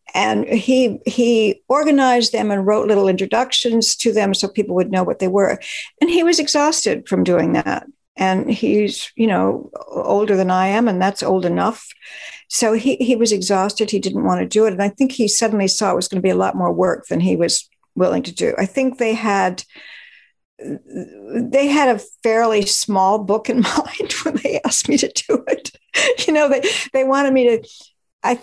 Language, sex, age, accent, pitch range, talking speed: English, female, 60-79, American, 195-260 Hz, 205 wpm